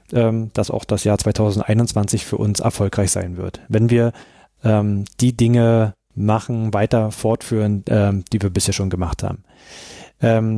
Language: German